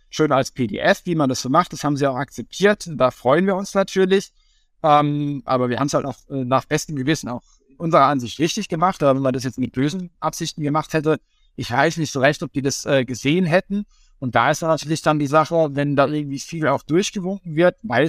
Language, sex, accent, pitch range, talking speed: German, male, German, 140-165 Hz, 235 wpm